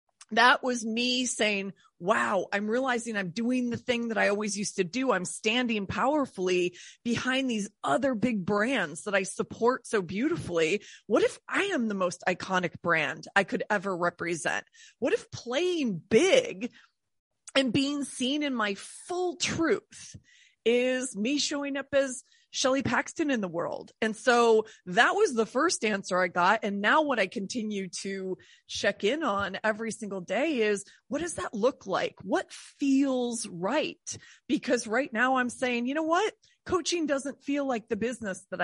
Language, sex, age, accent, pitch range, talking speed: English, female, 30-49, American, 200-260 Hz, 170 wpm